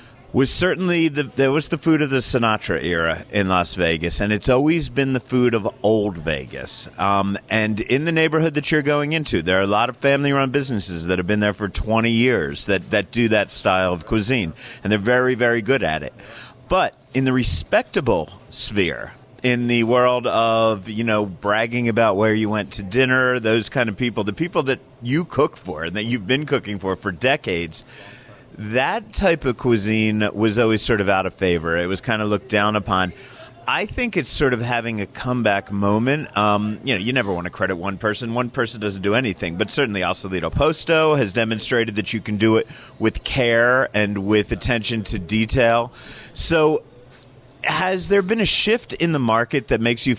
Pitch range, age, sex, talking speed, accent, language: 105-130 Hz, 40-59, male, 200 wpm, American, English